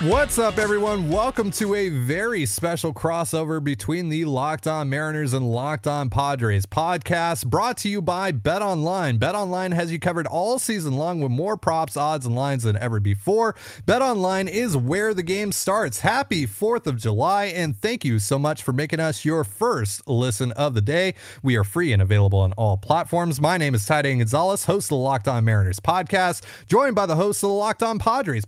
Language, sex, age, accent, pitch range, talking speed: English, male, 30-49, American, 130-200 Hz, 200 wpm